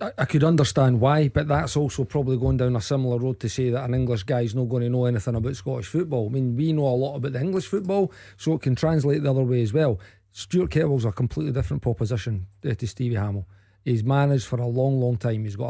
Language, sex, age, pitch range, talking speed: English, male, 40-59, 120-150 Hz, 245 wpm